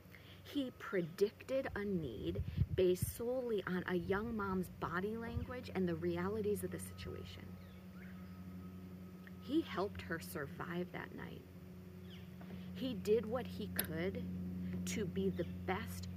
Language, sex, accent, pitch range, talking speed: English, female, American, 85-105 Hz, 125 wpm